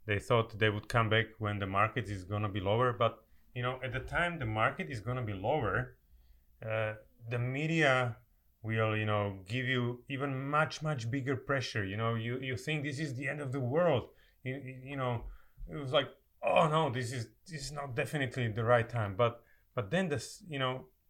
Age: 30-49